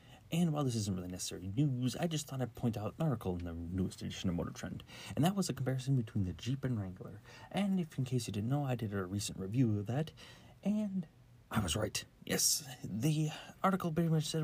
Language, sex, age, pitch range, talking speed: English, male, 30-49, 105-145 Hz, 235 wpm